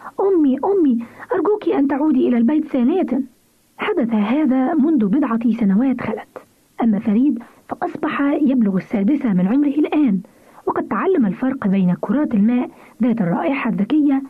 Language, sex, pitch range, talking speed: Arabic, female, 225-295 Hz, 130 wpm